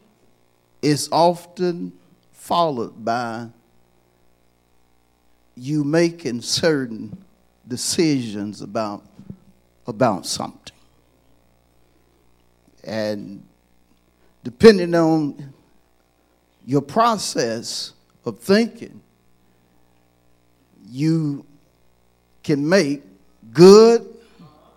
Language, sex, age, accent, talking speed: English, male, 50-69, American, 55 wpm